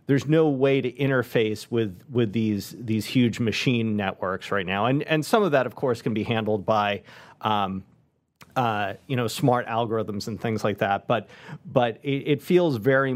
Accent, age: American, 40-59